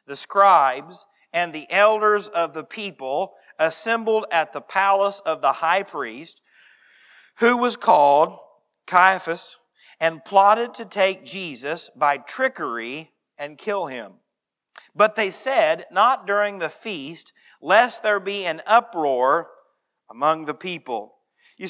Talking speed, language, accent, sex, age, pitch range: 125 wpm, English, American, male, 40-59, 155-200 Hz